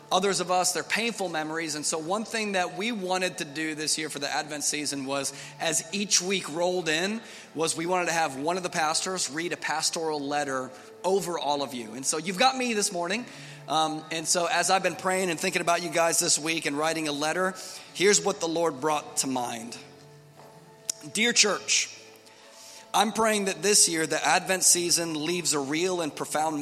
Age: 30-49